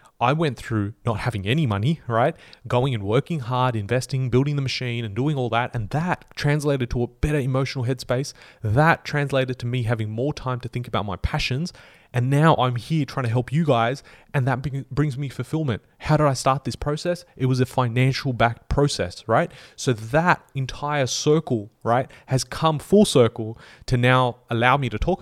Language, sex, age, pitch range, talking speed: English, male, 30-49, 110-135 Hz, 195 wpm